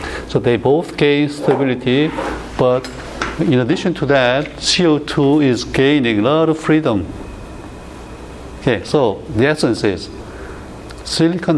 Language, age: Korean, 60-79